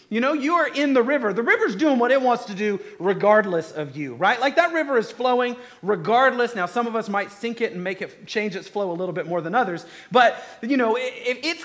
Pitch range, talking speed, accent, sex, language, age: 165-225 Hz, 245 wpm, American, male, English, 40-59